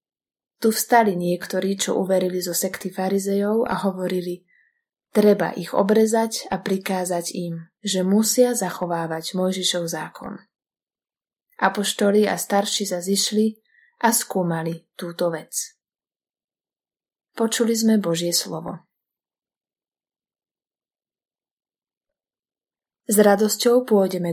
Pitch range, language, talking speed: 175-215 Hz, Slovak, 90 wpm